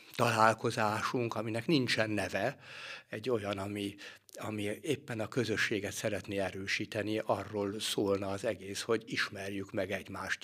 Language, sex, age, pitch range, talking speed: Hungarian, male, 60-79, 100-115 Hz, 120 wpm